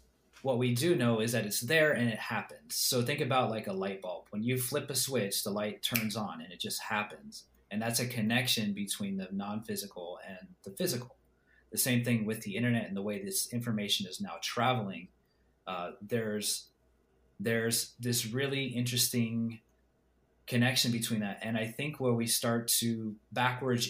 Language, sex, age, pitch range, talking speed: English, male, 30-49, 105-125 Hz, 180 wpm